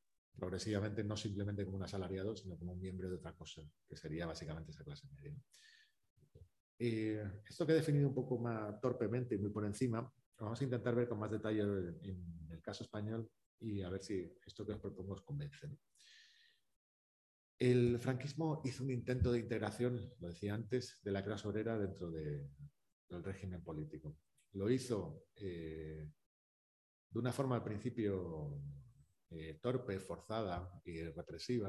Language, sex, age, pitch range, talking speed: Spanish, male, 40-59, 90-120 Hz, 160 wpm